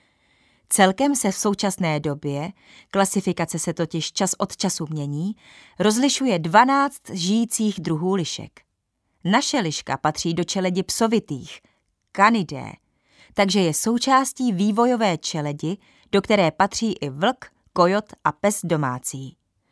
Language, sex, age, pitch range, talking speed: Czech, female, 30-49, 165-215 Hz, 115 wpm